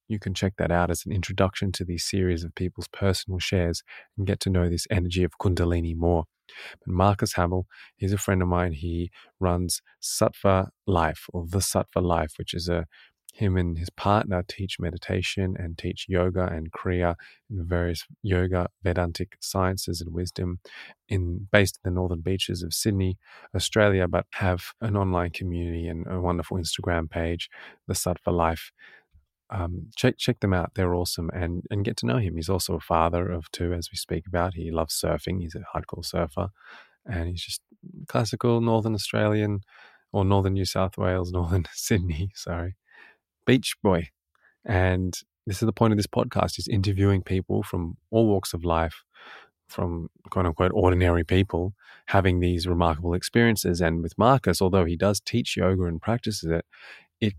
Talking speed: 175 wpm